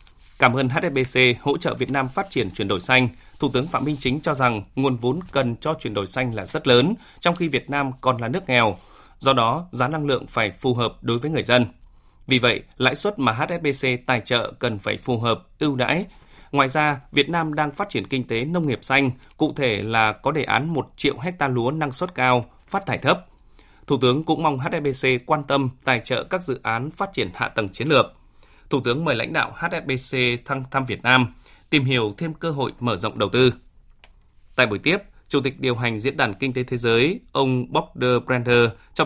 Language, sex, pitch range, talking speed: Vietnamese, male, 120-145 Hz, 225 wpm